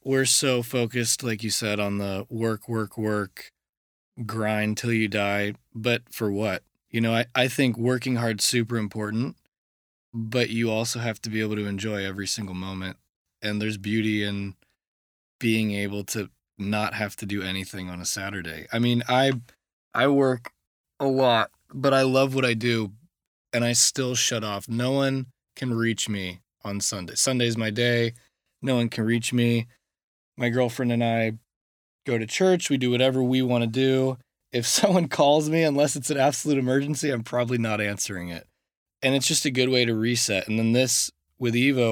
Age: 20-39